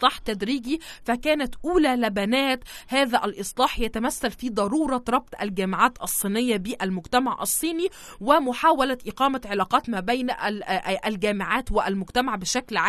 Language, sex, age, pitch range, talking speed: Arabic, female, 20-39, 205-260 Hz, 100 wpm